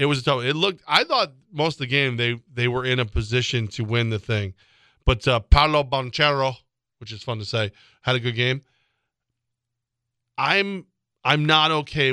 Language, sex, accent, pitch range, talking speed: English, male, American, 120-150 Hz, 200 wpm